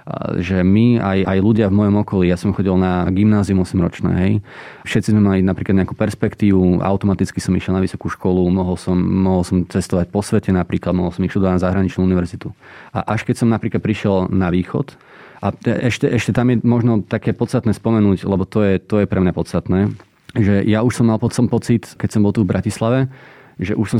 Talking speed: 210 wpm